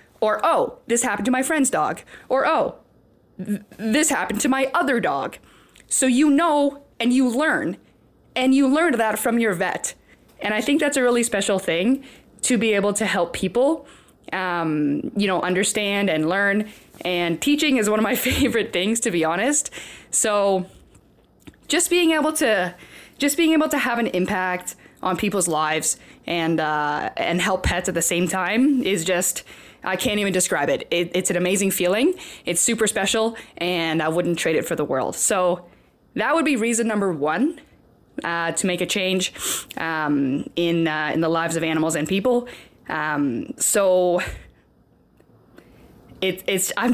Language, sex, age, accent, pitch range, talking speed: English, female, 20-39, American, 180-260 Hz, 175 wpm